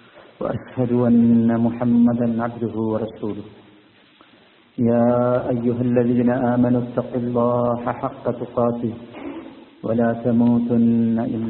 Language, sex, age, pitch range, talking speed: Malayalam, male, 50-69, 115-125 Hz, 100 wpm